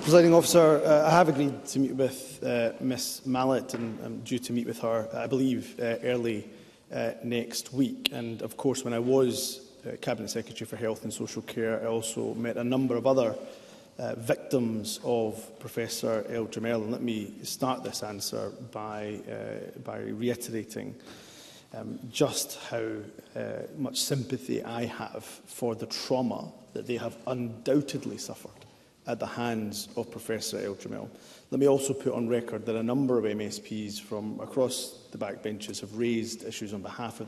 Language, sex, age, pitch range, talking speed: English, male, 30-49, 110-130 Hz, 170 wpm